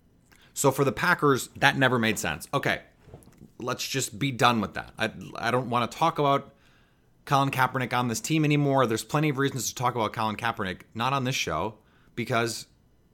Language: English